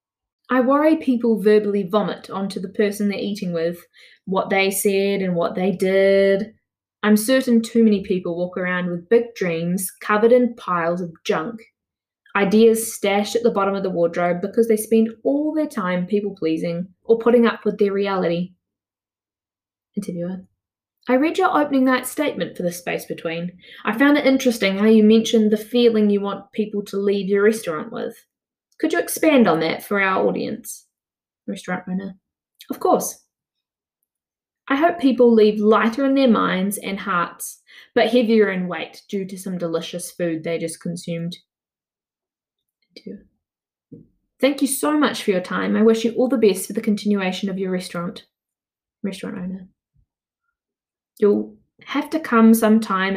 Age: 20-39